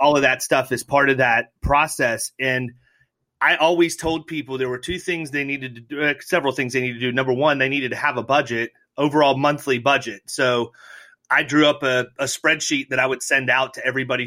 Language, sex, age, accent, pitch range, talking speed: English, male, 30-49, American, 130-150 Hz, 225 wpm